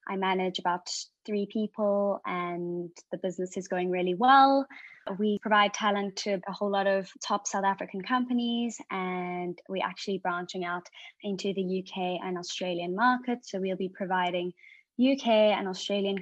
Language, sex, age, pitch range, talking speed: English, female, 20-39, 180-215 Hz, 155 wpm